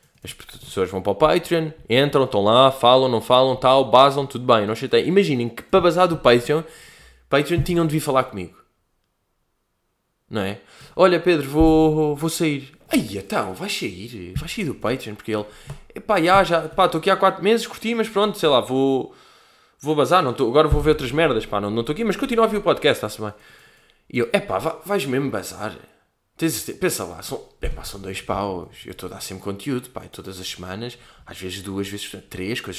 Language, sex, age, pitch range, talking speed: Portuguese, male, 20-39, 110-175 Hz, 215 wpm